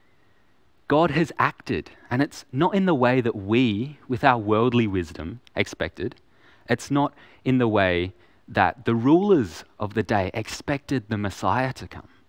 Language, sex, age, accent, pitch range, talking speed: English, male, 30-49, Australian, 100-135 Hz, 155 wpm